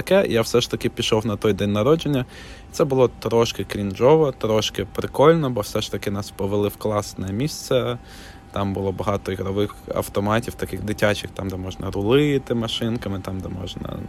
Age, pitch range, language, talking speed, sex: 20-39, 100-110 Hz, Ukrainian, 165 wpm, male